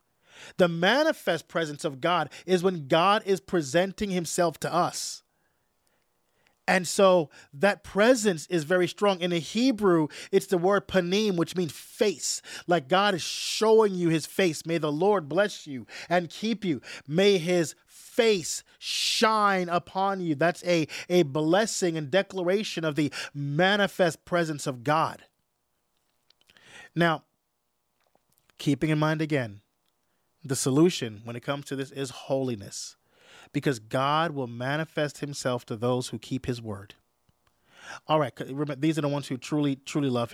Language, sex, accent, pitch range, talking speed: English, male, American, 135-180 Hz, 145 wpm